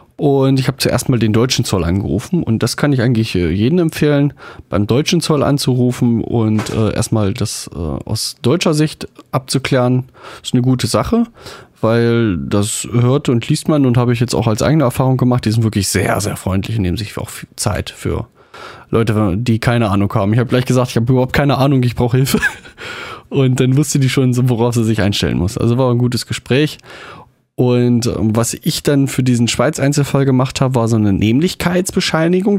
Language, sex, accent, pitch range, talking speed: German, male, German, 110-140 Hz, 200 wpm